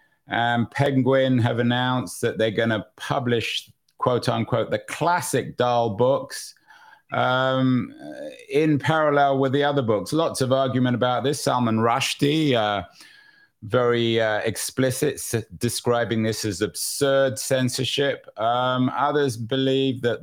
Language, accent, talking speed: English, British, 130 wpm